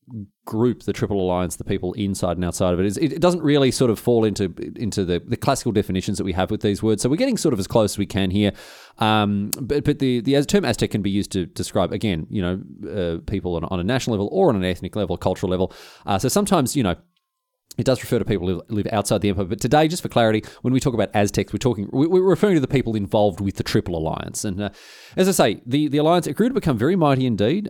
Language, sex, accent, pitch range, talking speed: English, male, Australian, 100-135 Hz, 265 wpm